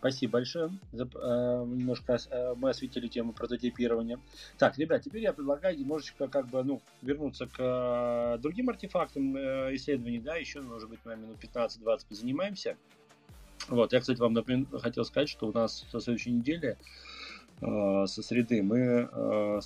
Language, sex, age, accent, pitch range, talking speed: Russian, male, 30-49, native, 100-125 Hz, 160 wpm